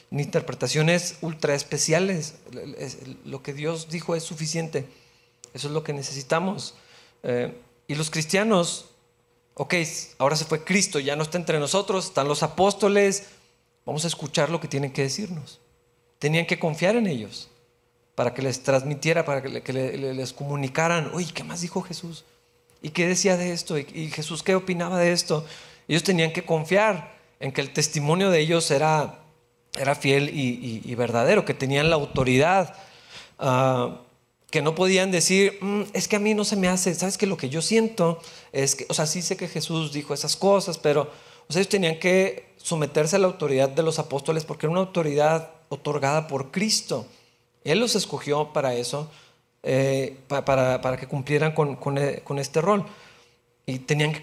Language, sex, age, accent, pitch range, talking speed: Spanish, male, 40-59, Mexican, 135-175 Hz, 180 wpm